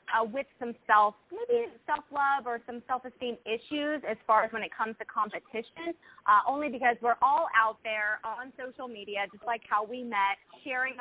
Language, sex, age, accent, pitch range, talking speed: English, female, 20-39, American, 210-255 Hz, 175 wpm